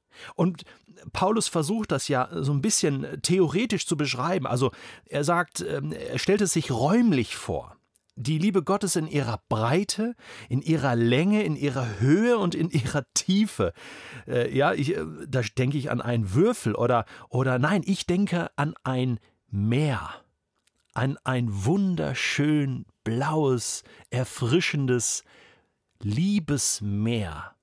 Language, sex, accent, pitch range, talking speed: German, male, German, 120-165 Hz, 125 wpm